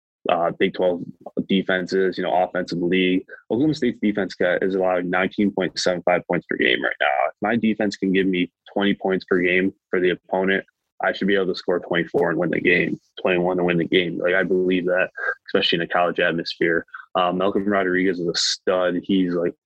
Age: 20-39